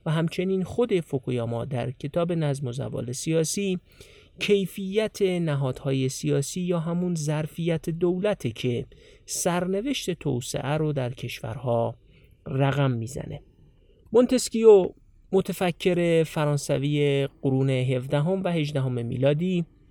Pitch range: 140-180 Hz